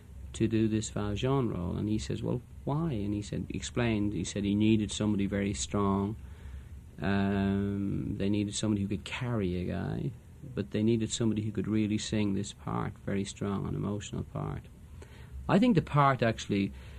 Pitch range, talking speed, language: 85-110 Hz, 180 wpm, English